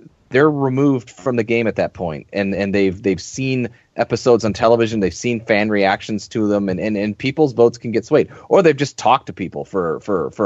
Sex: male